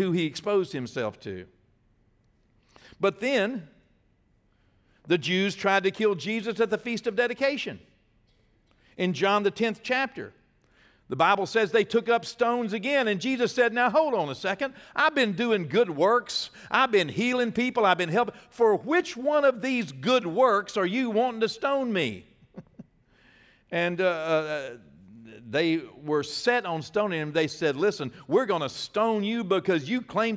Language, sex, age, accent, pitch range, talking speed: English, male, 60-79, American, 150-225 Hz, 165 wpm